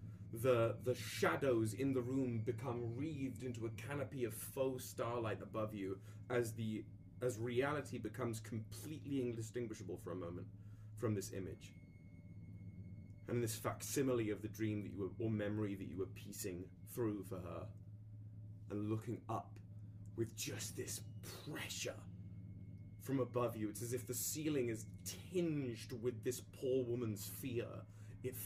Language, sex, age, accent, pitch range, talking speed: English, male, 20-39, British, 105-125 Hz, 150 wpm